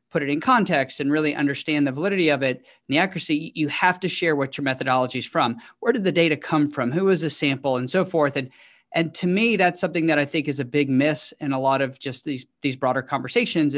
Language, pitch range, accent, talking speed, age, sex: English, 140-180 Hz, American, 255 wpm, 40-59, male